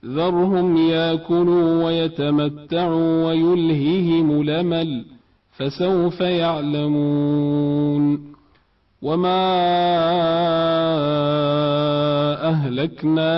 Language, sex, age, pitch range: Arabic, male, 40-59, 150-175 Hz